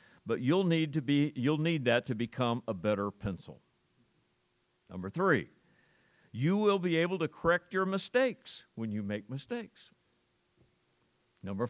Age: 50-69